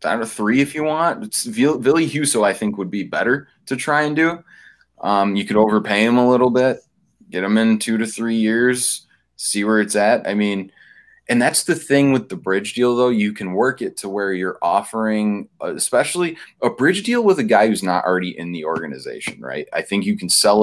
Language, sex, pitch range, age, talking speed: English, male, 95-120 Hz, 20-39, 220 wpm